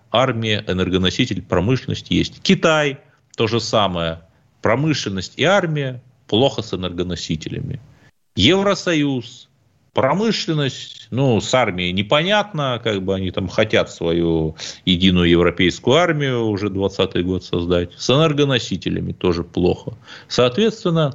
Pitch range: 95-145 Hz